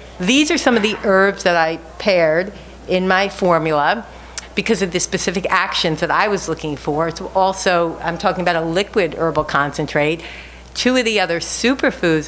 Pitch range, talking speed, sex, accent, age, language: 165-200 Hz, 175 wpm, female, American, 50-69, English